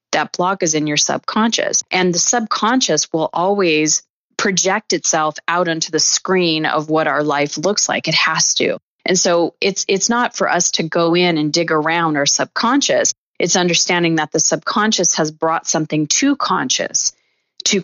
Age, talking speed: 30-49, 175 wpm